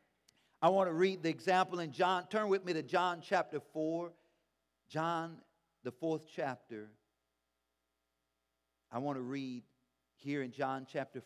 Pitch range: 140-195 Hz